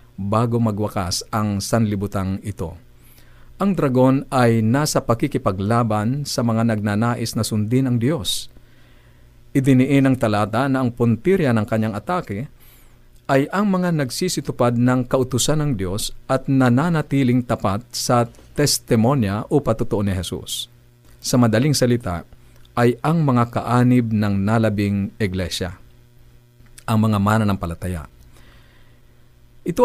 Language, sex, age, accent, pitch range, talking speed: Filipino, male, 50-69, native, 110-130 Hz, 120 wpm